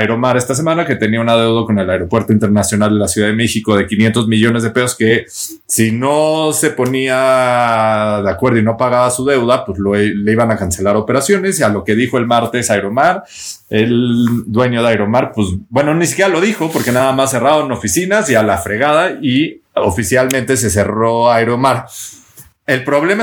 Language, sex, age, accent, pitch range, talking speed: Spanish, male, 30-49, Mexican, 110-135 Hz, 190 wpm